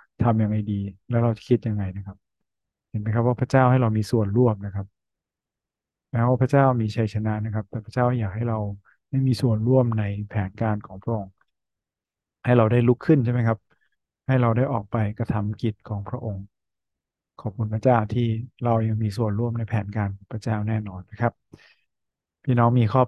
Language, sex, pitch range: Thai, male, 105-125 Hz